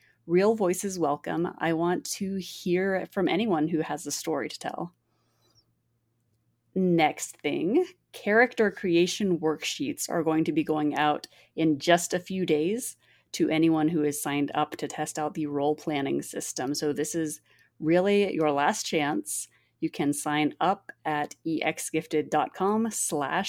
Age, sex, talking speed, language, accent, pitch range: 30-49, female, 145 wpm, English, American, 150-190 Hz